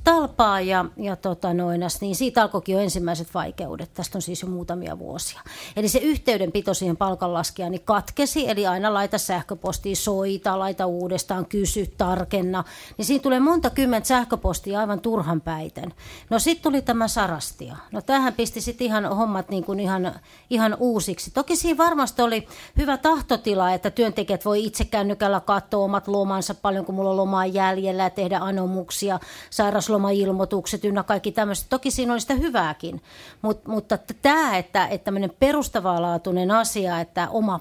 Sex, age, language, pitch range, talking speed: female, 30-49, Finnish, 185-220 Hz, 160 wpm